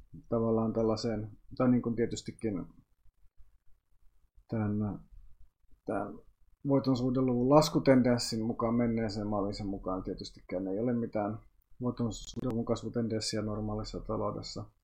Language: Finnish